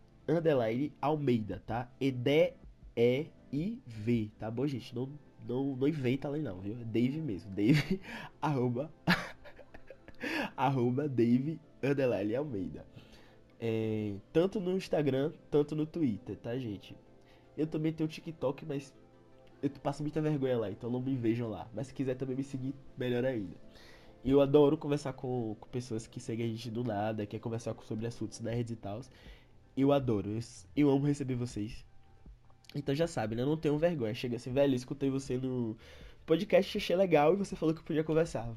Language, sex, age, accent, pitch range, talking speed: Portuguese, male, 20-39, Brazilian, 115-145 Hz, 165 wpm